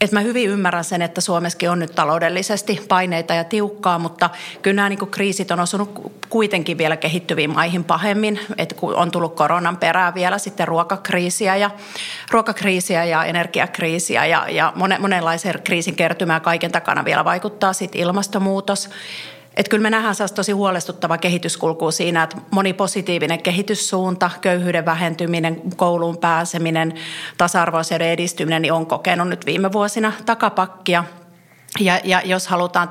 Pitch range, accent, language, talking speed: 170-200 Hz, native, Finnish, 140 wpm